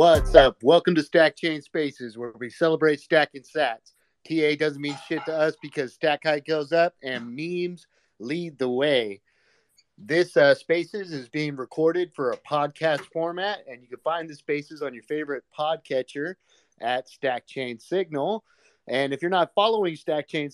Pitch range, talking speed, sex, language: 130-165 Hz, 170 wpm, male, English